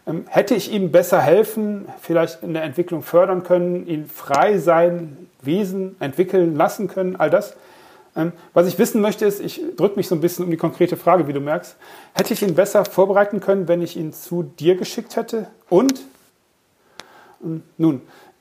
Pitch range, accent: 160-190 Hz, German